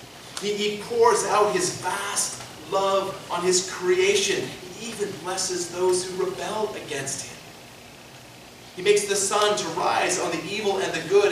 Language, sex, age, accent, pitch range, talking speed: English, male, 30-49, American, 155-210 Hz, 155 wpm